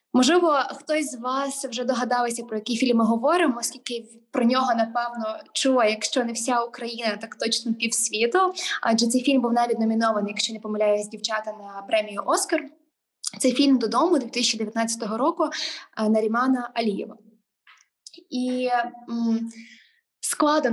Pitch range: 225-265 Hz